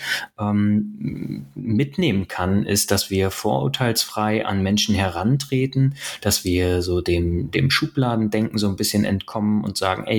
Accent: German